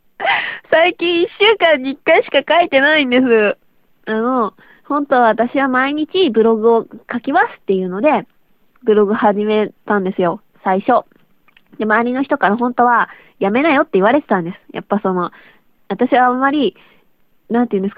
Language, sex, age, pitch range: Japanese, female, 20-39, 200-280 Hz